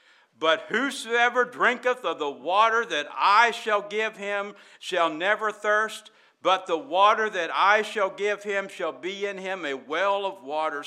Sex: male